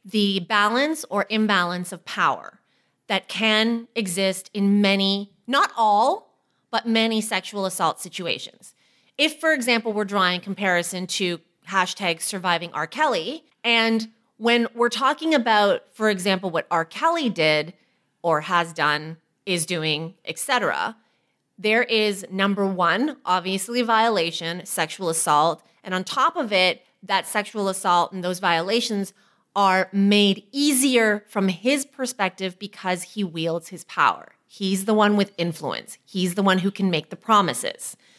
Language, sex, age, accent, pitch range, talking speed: English, female, 30-49, American, 185-230 Hz, 140 wpm